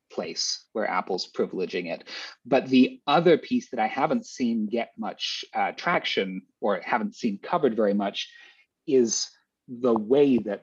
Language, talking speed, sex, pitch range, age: English, 150 wpm, male, 105-130 Hz, 30-49